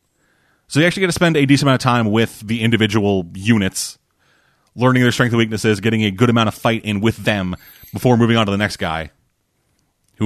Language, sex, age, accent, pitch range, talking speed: English, male, 30-49, American, 100-120 Hz, 215 wpm